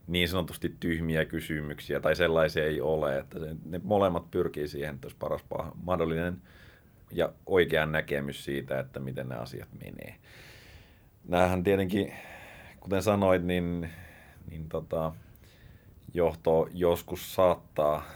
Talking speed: 120 wpm